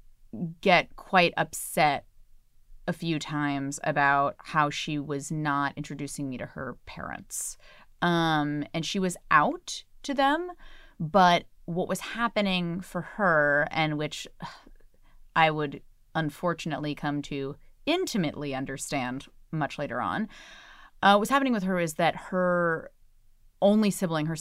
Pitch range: 140-175 Hz